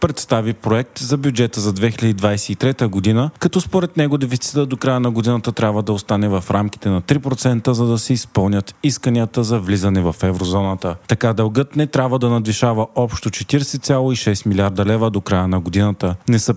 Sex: male